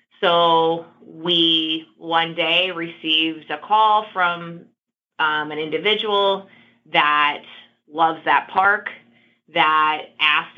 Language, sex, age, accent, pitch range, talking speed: English, female, 20-39, American, 155-180 Hz, 95 wpm